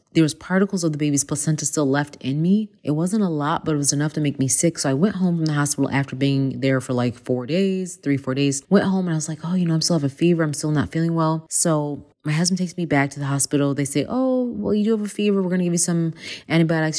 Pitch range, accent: 135-160 Hz, American